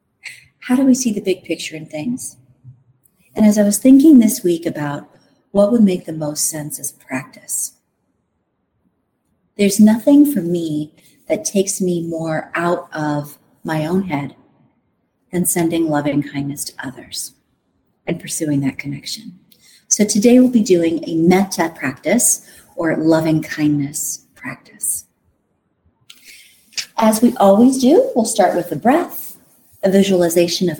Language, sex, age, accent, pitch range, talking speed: English, female, 40-59, American, 165-230 Hz, 140 wpm